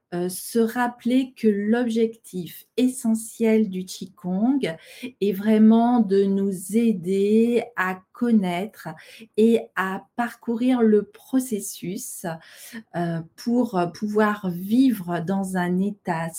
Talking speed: 90 wpm